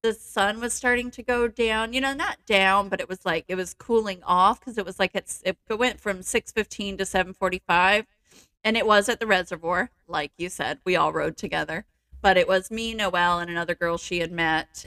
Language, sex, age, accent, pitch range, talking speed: English, female, 30-49, American, 170-220 Hz, 220 wpm